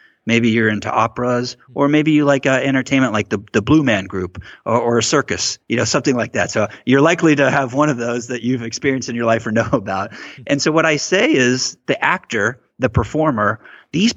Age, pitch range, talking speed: 30-49, 110-135 Hz, 225 wpm